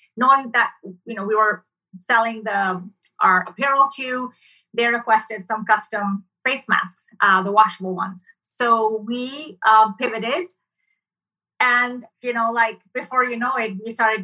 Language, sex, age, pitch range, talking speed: English, female, 30-49, 215-250 Hz, 150 wpm